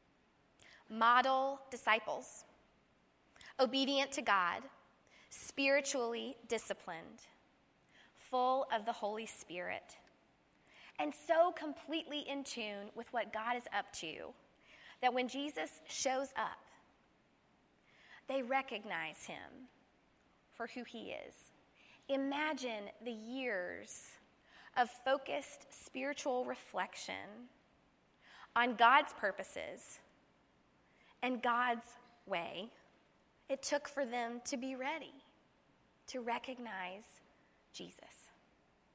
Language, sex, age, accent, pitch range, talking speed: English, female, 20-39, American, 230-275 Hz, 90 wpm